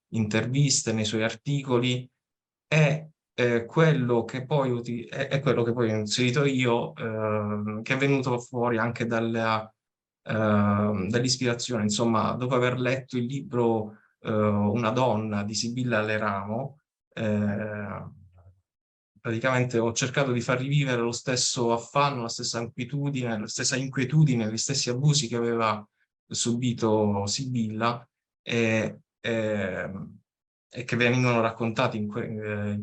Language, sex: Italian, male